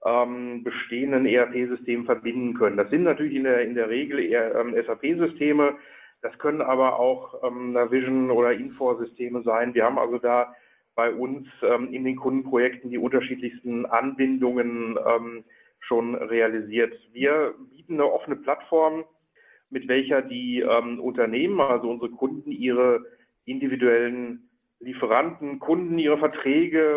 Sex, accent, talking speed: male, German, 120 wpm